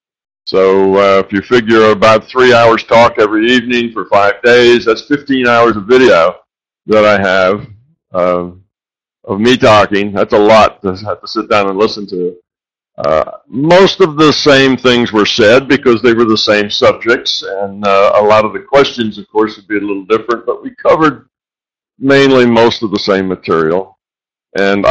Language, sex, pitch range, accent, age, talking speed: English, male, 100-130 Hz, American, 50-69, 180 wpm